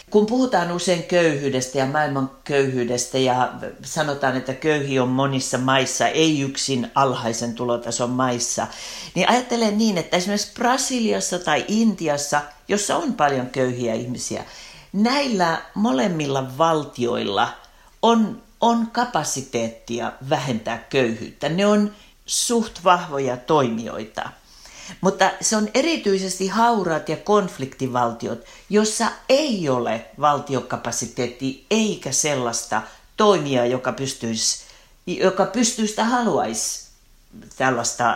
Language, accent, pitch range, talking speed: Finnish, native, 130-200 Hz, 105 wpm